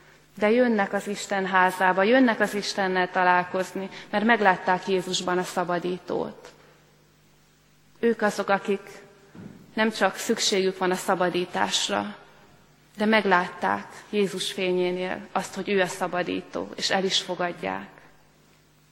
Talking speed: 115 wpm